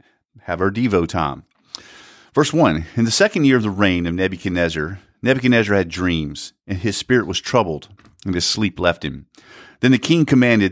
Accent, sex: American, male